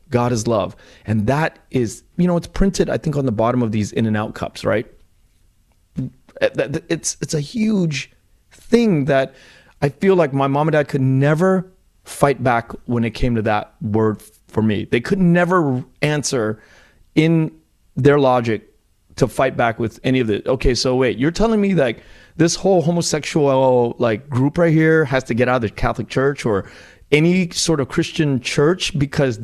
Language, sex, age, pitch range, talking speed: English, male, 30-49, 115-170 Hz, 185 wpm